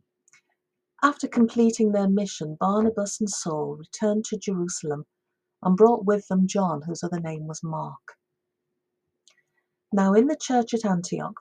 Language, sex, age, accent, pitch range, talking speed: English, female, 50-69, British, 175-220 Hz, 135 wpm